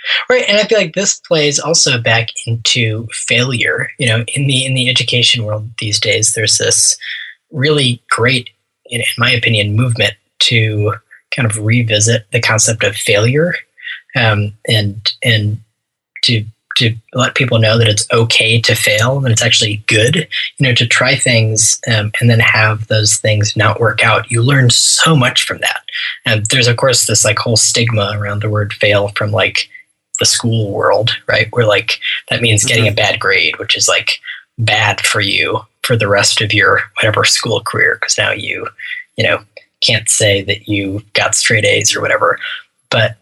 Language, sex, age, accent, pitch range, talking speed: English, male, 20-39, American, 110-125 Hz, 180 wpm